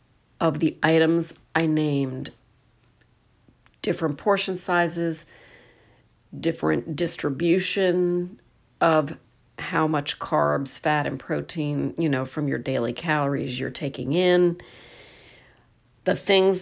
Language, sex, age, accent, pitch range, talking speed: English, female, 40-59, American, 140-170 Hz, 100 wpm